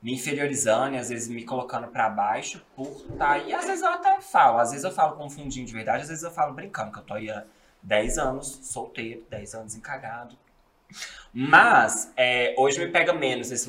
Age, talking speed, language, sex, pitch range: 20-39, 205 wpm, Portuguese, male, 110-130 Hz